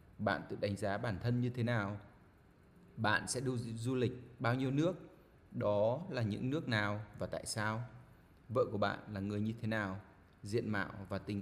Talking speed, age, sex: 190 wpm, 20-39, male